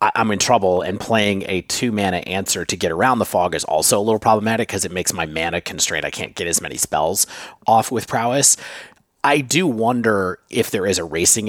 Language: English